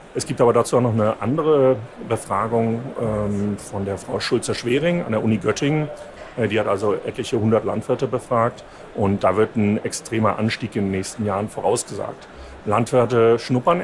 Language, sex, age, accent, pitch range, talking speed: German, male, 40-59, German, 105-120 Hz, 175 wpm